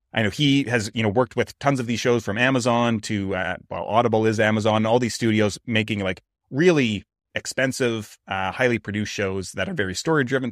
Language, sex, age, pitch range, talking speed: English, male, 30-49, 105-130 Hz, 205 wpm